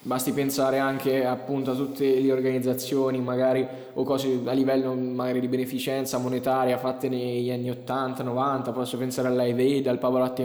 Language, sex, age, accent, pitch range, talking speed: Italian, male, 10-29, native, 130-145 Hz, 160 wpm